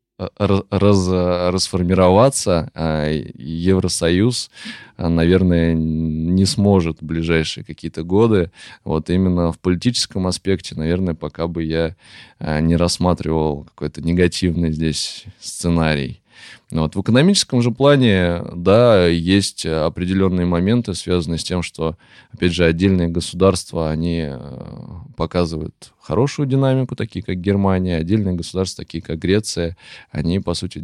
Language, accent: Russian, native